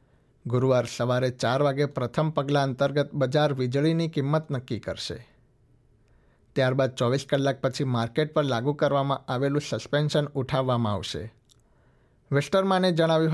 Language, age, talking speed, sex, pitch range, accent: Gujarati, 60-79, 115 wpm, male, 125-155 Hz, native